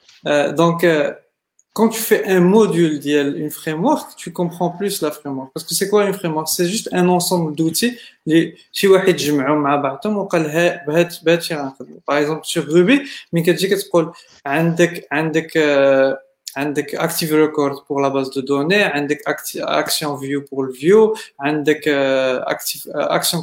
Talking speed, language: 130 wpm, Arabic